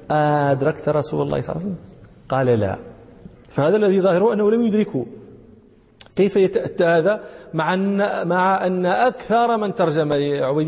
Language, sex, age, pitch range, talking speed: Danish, male, 40-59, 145-200 Hz, 135 wpm